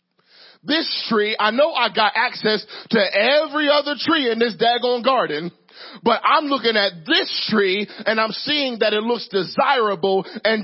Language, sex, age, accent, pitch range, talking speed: English, male, 40-59, American, 175-235 Hz, 165 wpm